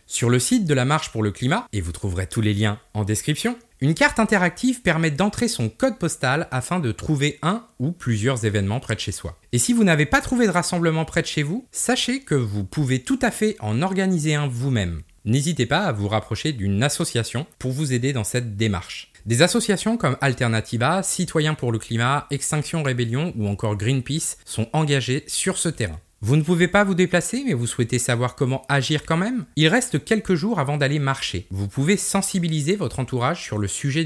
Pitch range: 115-175 Hz